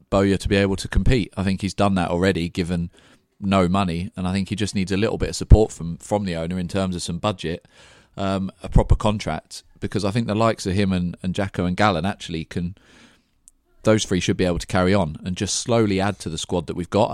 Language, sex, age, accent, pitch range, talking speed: English, male, 30-49, British, 90-105 Hz, 250 wpm